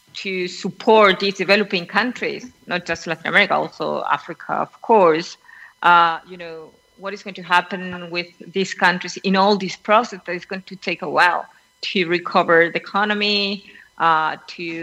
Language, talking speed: Spanish, 165 wpm